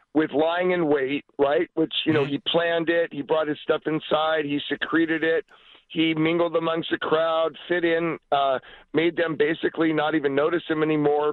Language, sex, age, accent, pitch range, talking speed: English, male, 50-69, American, 145-170 Hz, 185 wpm